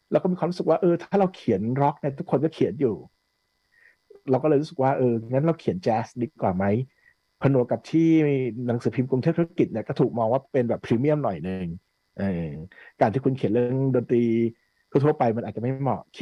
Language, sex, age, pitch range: Thai, male, 60-79, 105-145 Hz